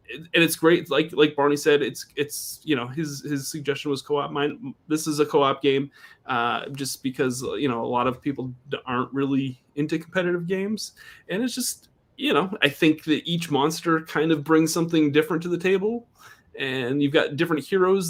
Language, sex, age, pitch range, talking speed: English, male, 20-39, 135-170 Hz, 195 wpm